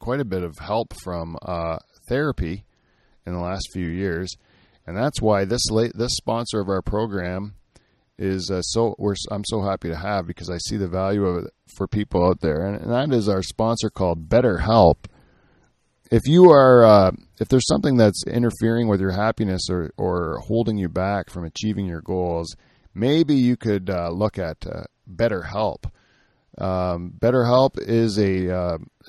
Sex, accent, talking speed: male, American, 180 wpm